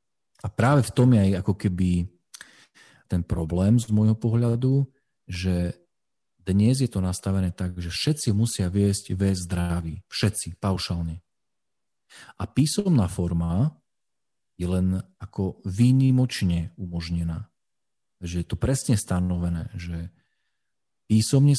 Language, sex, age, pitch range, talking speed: Slovak, male, 40-59, 90-110 Hz, 115 wpm